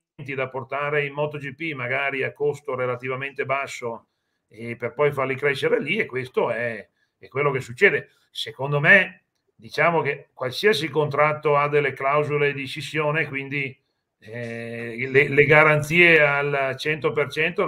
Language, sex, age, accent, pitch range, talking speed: Italian, male, 40-59, native, 135-160 Hz, 135 wpm